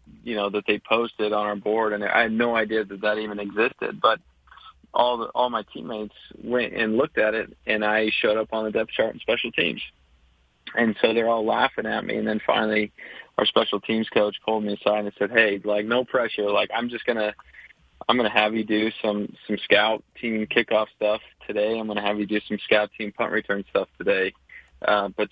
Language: English